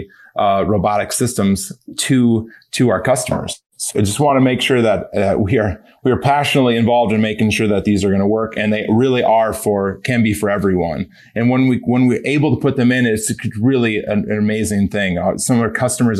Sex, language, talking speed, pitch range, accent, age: male, English, 225 wpm, 100-120 Hz, American, 30-49